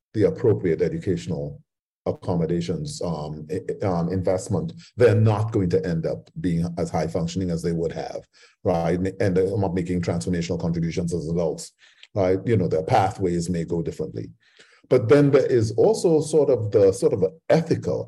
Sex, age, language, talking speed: male, 40-59, English, 165 wpm